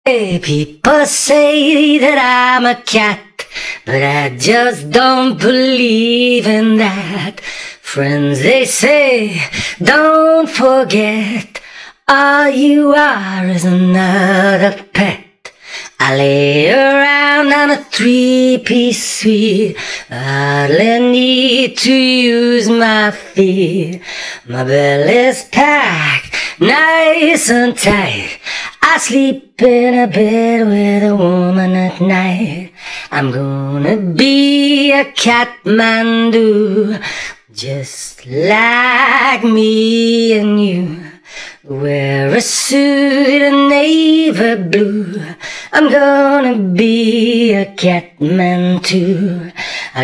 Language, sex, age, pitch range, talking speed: English, female, 30-49, 185-260 Hz, 95 wpm